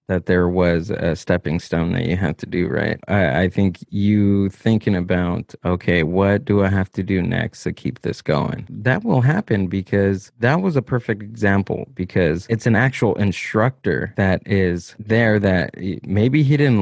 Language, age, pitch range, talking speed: English, 20-39, 95-120 Hz, 180 wpm